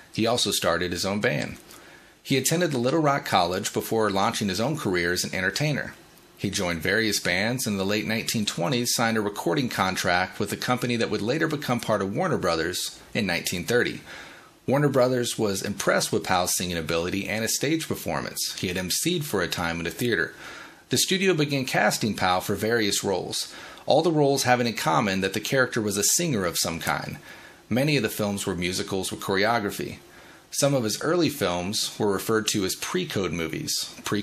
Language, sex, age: English, male, 30-49